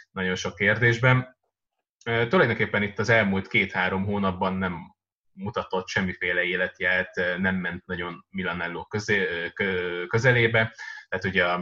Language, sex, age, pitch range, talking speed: Hungarian, male, 20-39, 90-110 Hz, 105 wpm